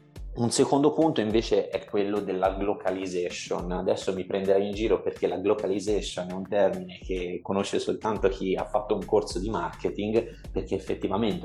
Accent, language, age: native, Italian, 30-49